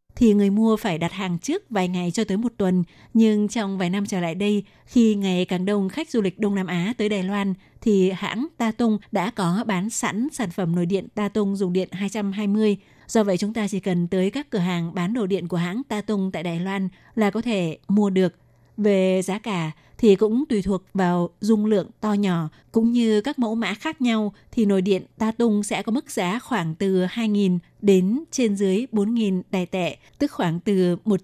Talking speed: 225 wpm